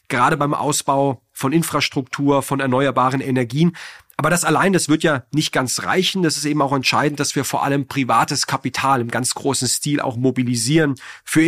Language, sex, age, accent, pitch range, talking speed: German, male, 40-59, German, 130-150 Hz, 185 wpm